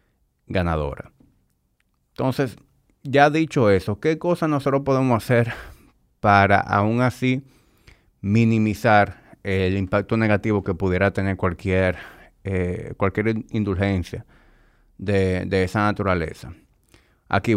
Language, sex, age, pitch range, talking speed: Spanish, male, 30-49, 95-115 Hz, 95 wpm